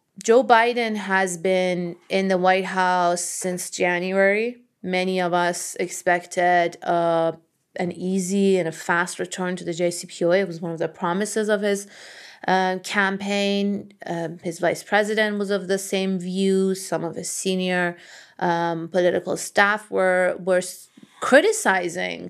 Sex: female